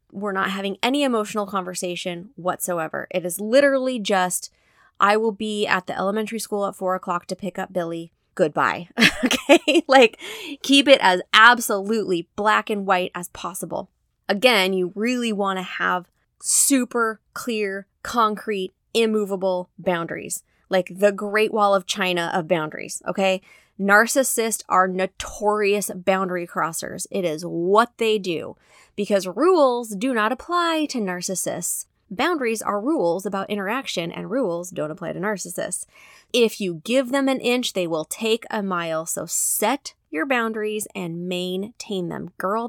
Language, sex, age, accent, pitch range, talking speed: English, female, 20-39, American, 185-225 Hz, 145 wpm